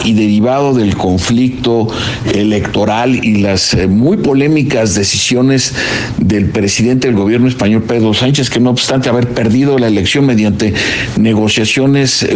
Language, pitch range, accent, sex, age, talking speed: Spanish, 105-125 Hz, Mexican, male, 50-69, 125 wpm